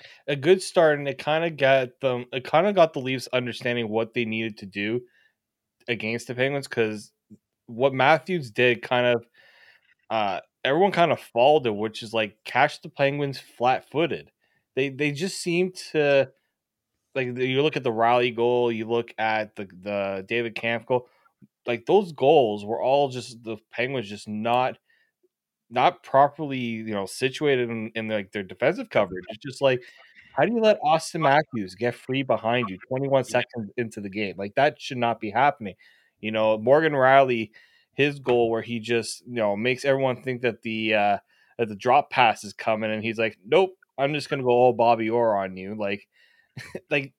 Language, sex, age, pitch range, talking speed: English, male, 20-39, 115-140 Hz, 185 wpm